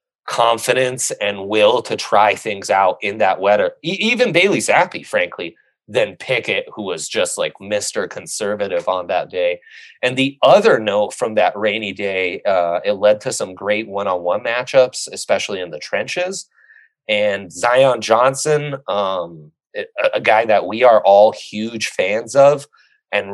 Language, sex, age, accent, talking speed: English, male, 30-49, American, 150 wpm